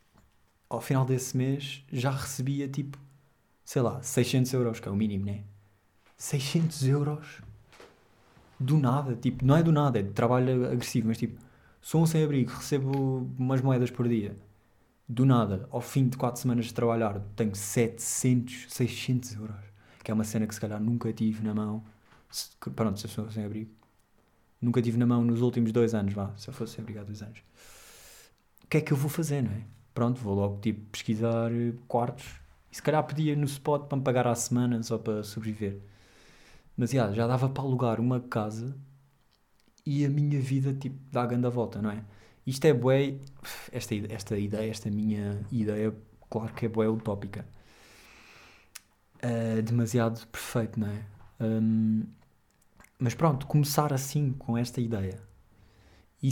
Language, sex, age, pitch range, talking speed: Portuguese, male, 20-39, 110-130 Hz, 170 wpm